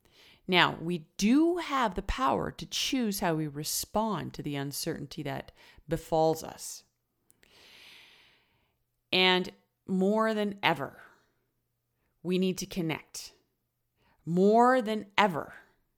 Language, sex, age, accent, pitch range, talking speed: English, female, 30-49, American, 160-200 Hz, 105 wpm